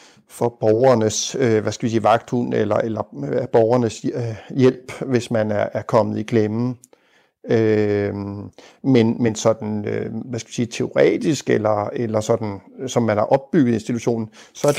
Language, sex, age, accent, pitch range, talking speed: Danish, male, 60-79, native, 110-125 Hz, 155 wpm